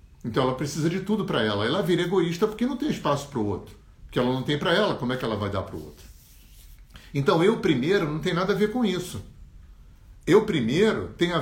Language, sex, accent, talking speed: Portuguese, male, Brazilian, 240 wpm